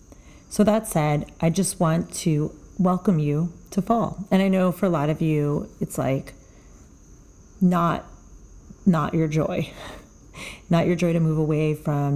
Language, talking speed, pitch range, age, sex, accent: English, 160 wpm, 150-185 Hz, 40-59, female, American